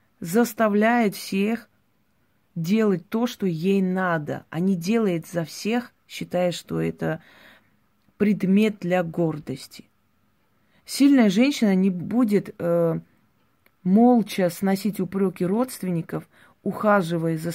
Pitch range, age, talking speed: 170-210 Hz, 30-49, 100 wpm